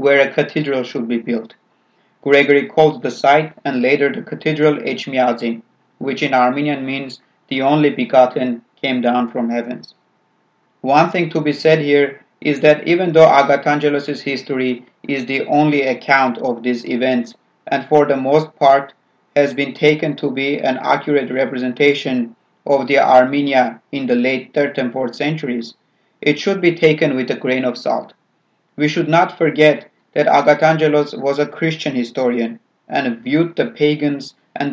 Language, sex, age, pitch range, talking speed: English, male, 40-59, 130-155 Hz, 160 wpm